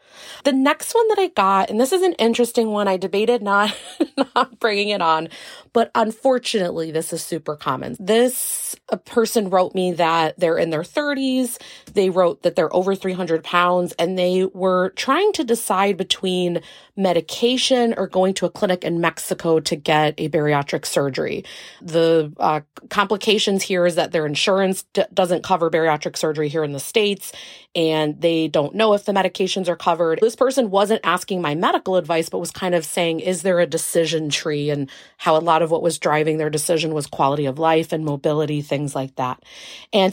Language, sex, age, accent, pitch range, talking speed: English, female, 30-49, American, 160-200 Hz, 185 wpm